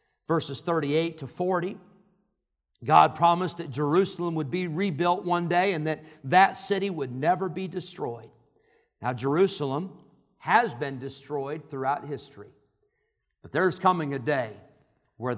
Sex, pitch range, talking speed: male, 130-205 Hz, 135 wpm